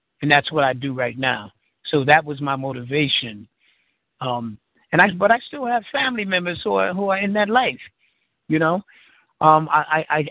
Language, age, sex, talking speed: English, 60-79, male, 190 wpm